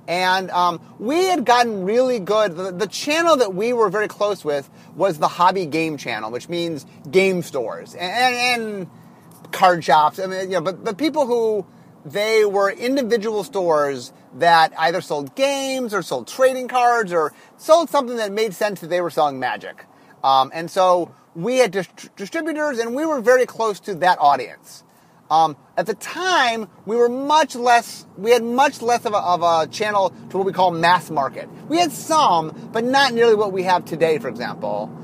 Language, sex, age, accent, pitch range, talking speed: English, male, 30-49, American, 165-230 Hz, 180 wpm